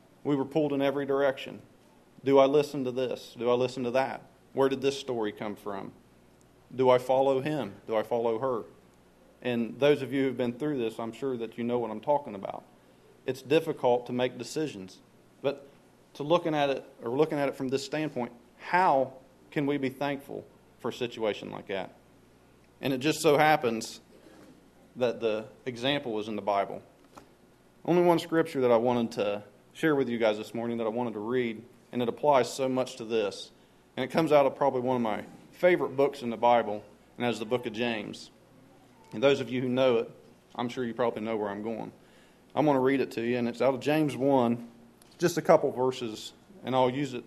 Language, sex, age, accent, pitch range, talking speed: English, male, 40-59, American, 115-140 Hz, 215 wpm